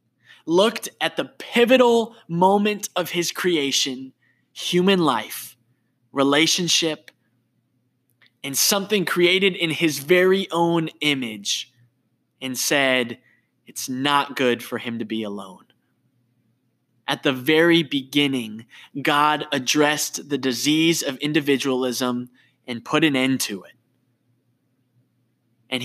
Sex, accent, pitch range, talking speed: male, American, 120-155 Hz, 105 wpm